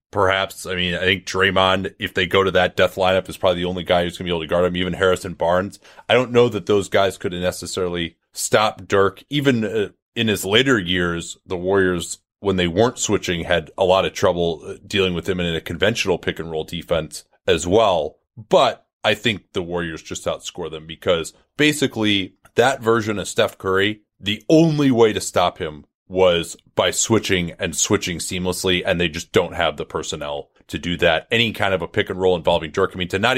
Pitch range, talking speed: 85-100 Hz, 210 wpm